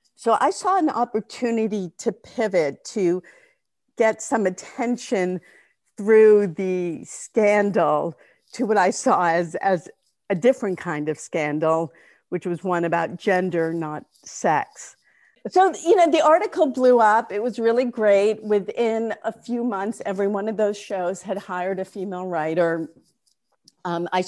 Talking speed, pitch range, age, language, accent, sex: 145 wpm, 170-220 Hz, 50-69, English, American, female